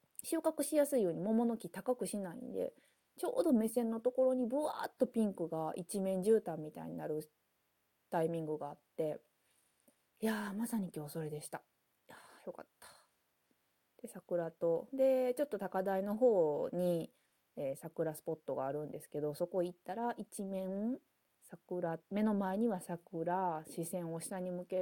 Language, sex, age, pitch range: Japanese, female, 20-39, 165-255 Hz